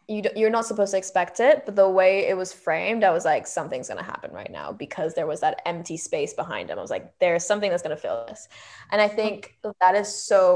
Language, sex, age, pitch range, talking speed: English, female, 10-29, 185-220 Hz, 255 wpm